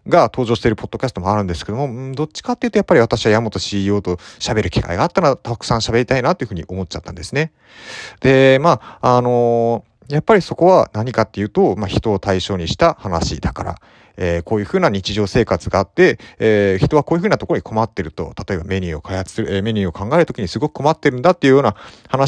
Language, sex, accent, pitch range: Japanese, male, native, 100-160 Hz